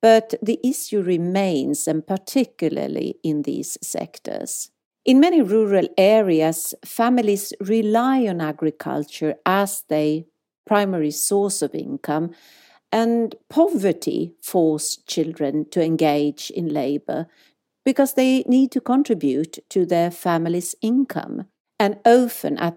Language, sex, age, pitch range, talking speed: English, female, 50-69, 160-235 Hz, 115 wpm